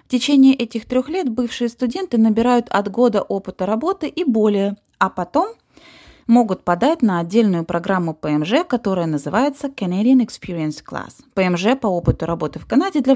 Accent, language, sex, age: native, Russian, female, 20-39